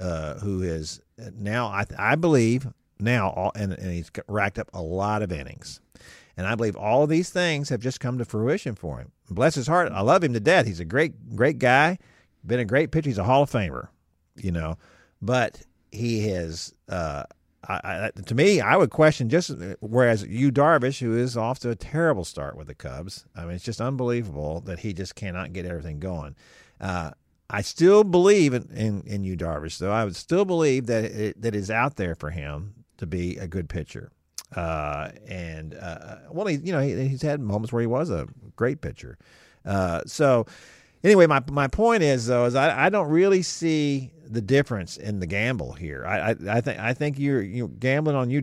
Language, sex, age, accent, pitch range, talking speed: English, male, 50-69, American, 95-140 Hz, 205 wpm